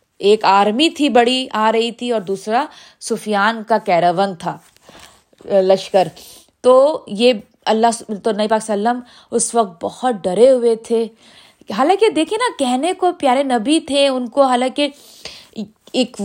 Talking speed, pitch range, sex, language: 135 wpm, 205-255 Hz, female, Urdu